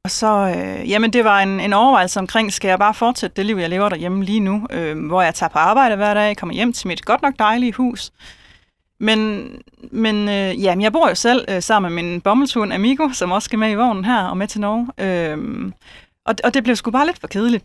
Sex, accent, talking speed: female, native, 240 wpm